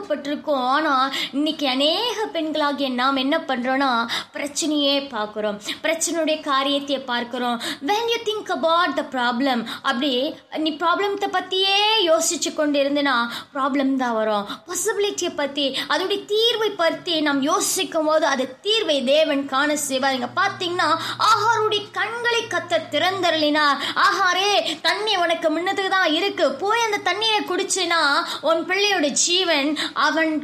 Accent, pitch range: native, 270-335 Hz